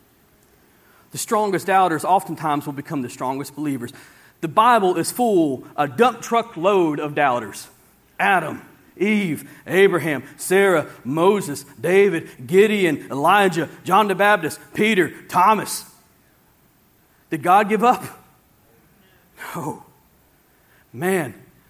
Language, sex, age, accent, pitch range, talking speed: English, male, 40-59, American, 160-225 Hz, 105 wpm